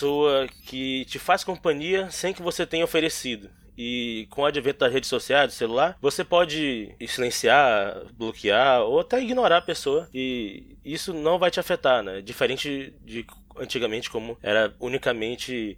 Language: Portuguese